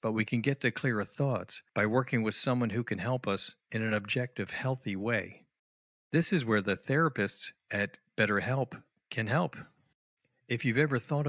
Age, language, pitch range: 50-69, English, 100-125 Hz